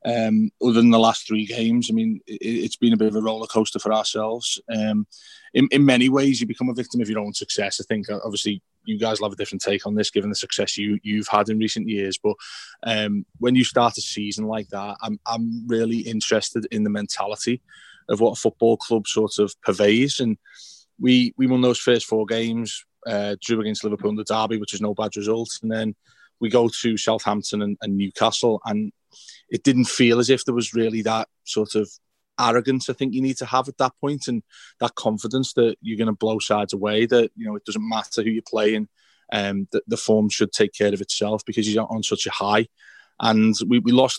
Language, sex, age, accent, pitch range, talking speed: English, male, 20-39, British, 105-120 Hz, 225 wpm